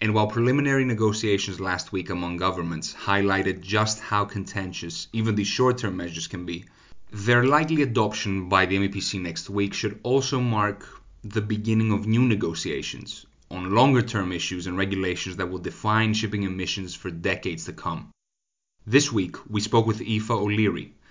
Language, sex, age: English, male, 30-49